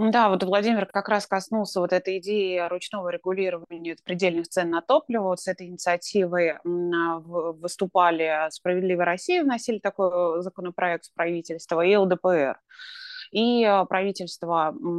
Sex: female